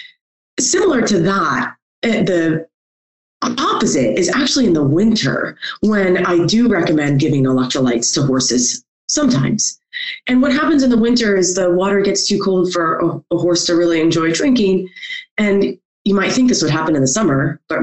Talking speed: 165 wpm